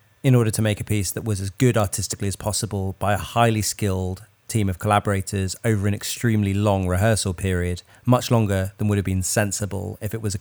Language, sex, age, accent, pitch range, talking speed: English, male, 30-49, British, 100-115 Hz, 215 wpm